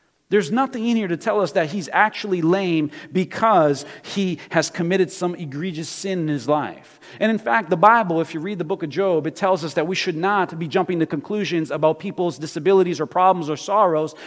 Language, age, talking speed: English, 40-59, 215 wpm